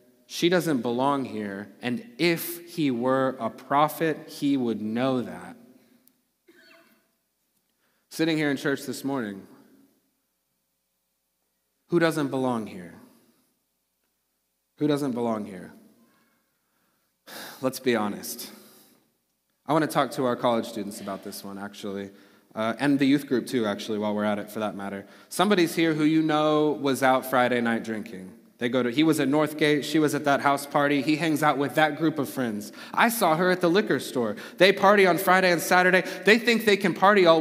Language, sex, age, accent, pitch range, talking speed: English, male, 30-49, American, 125-175 Hz, 170 wpm